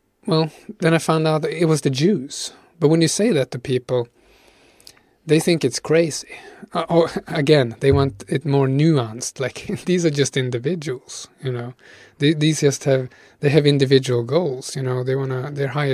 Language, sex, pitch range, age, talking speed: English, male, 130-160 Hz, 30-49, 180 wpm